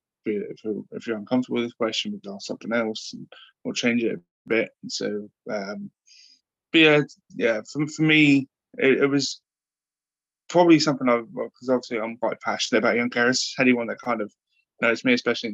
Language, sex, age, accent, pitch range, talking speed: English, male, 20-39, British, 105-165 Hz, 190 wpm